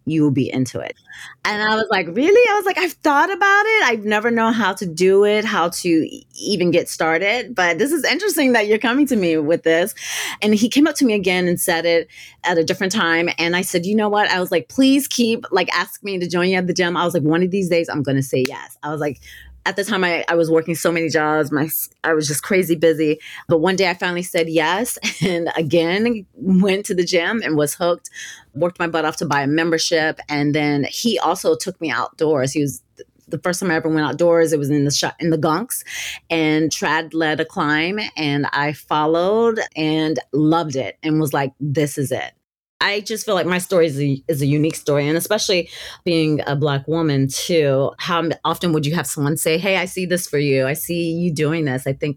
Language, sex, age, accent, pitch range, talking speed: English, female, 30-49, American, 145-180 Hz, 240 wpm